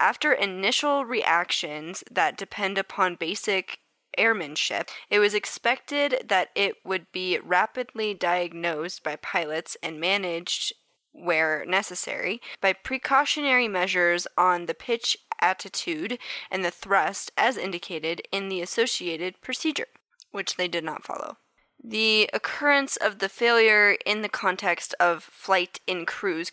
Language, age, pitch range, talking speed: English, 10-29, 175-220 Hz, 125 wpm